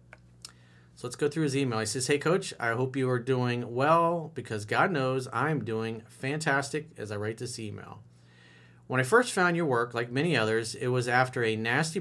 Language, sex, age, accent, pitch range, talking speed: English, male, 40-59, American, 110-140 Hz, 205 wpm